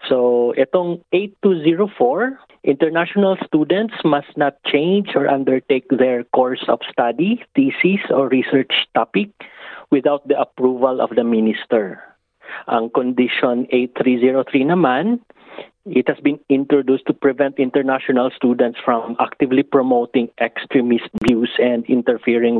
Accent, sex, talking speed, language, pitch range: native, male, 115 wpm, Filipino, 125-160 Hz